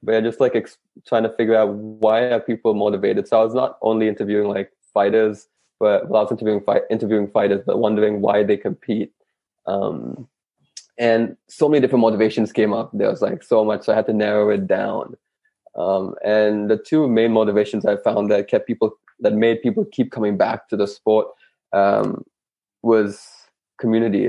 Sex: male